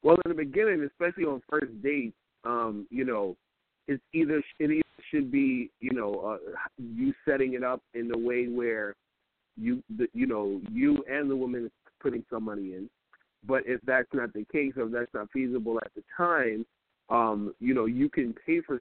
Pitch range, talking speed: 115-145 Hz, 200 wpm